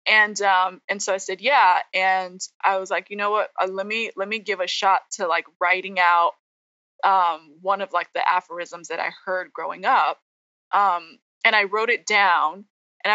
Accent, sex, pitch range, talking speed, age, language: American, female, 180-210 Hz, 200 wpm, 20-39, English